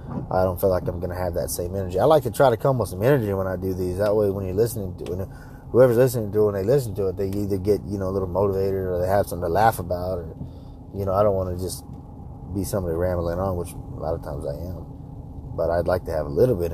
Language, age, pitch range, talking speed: English, 30-49, 85-115 Hz, 295 wpm